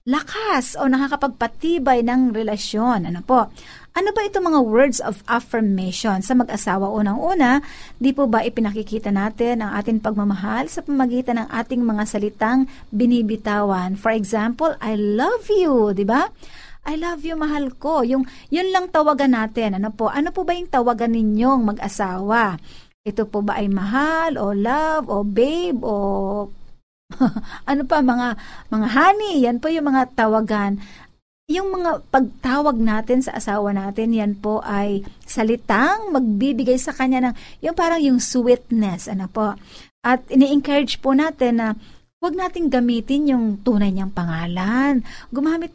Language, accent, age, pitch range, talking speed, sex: Filipino, native, 50-69, 215-285 Hz, 150 wpm, female